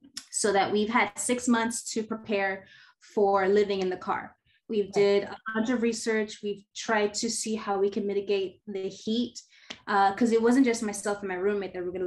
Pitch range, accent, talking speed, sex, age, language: 200-245 Hz, American, 205 wpm, female, 20-39, English